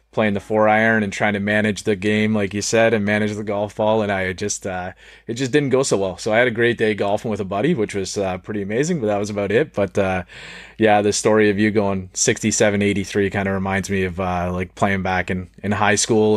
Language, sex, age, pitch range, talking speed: English, male, 30-49, 95-105 Hz, 260 wpm